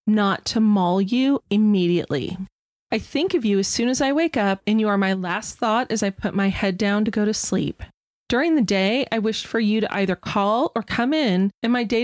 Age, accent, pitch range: 30-49, American, 190-235 Hz